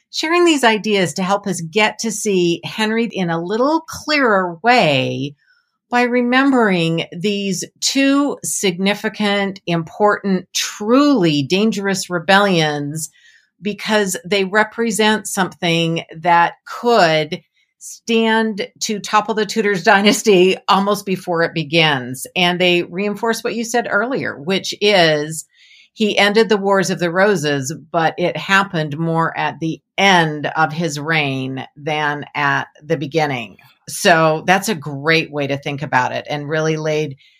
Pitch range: 160-215 Hz